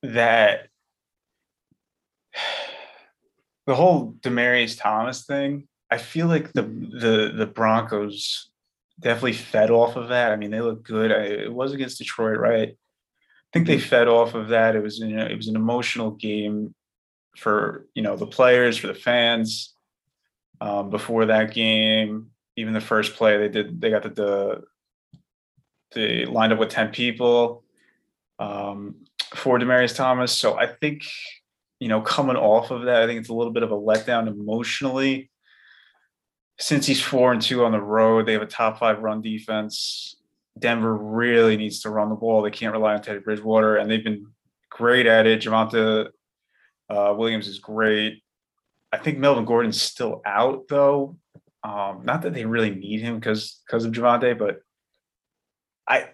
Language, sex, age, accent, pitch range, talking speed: English, male, 20-39, American, 110-125 Hz, 165 wpm